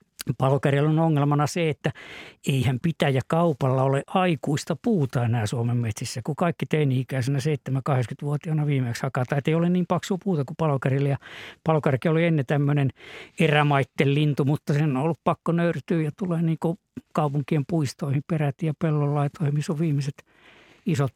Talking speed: 150 wpm